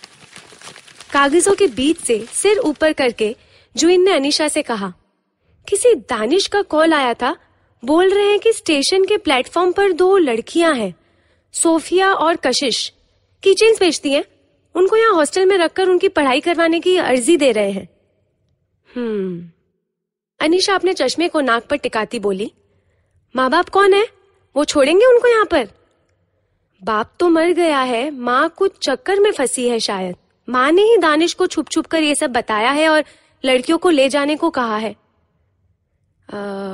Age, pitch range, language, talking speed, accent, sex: 30-49, 235-350 Hz, Hindi, 160 wpm, native, female